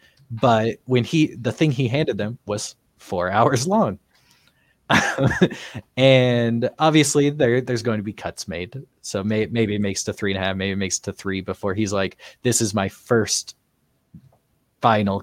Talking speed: 170 wpm